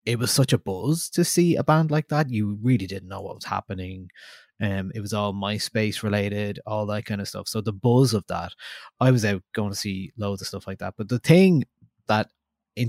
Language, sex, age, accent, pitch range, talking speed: English, male, 20-39, Irish, 100-130 Hz, 235 wpm